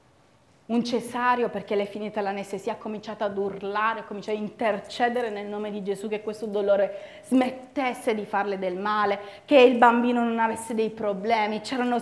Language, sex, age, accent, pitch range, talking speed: Italian, female, 30-49, native, 235-355 Hz, 175 wpm